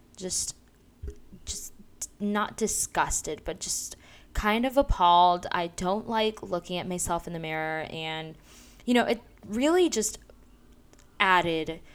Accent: American